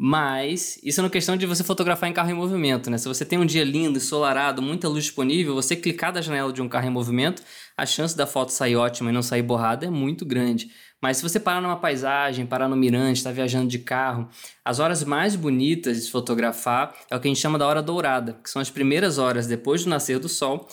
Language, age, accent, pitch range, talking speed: Portuguese, 20-39, Brazilian, 125-150 Hz, 240 wpm